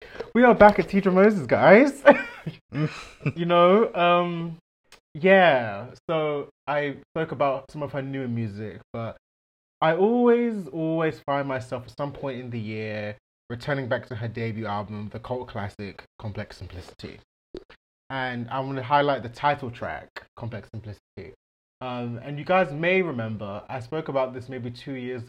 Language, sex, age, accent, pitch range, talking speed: English, male, 20-39, British, 110-140 Hz, 155 wpm